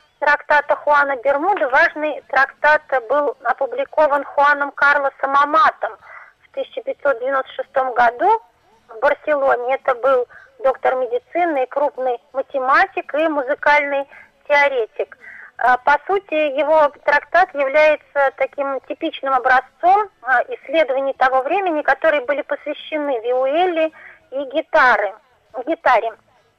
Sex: female